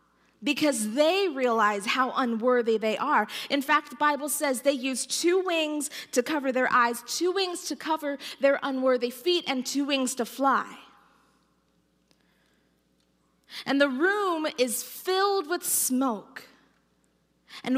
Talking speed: 135 wpm